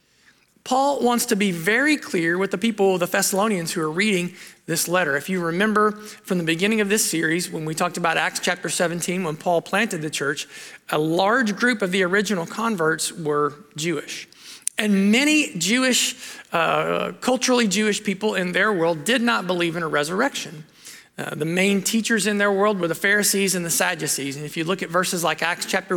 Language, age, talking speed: English, 40-59, 195 wpm